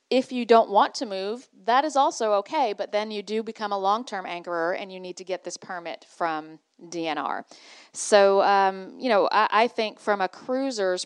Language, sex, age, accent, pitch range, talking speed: English, female, 40-59, American, 175-205 Hz, 200 wpm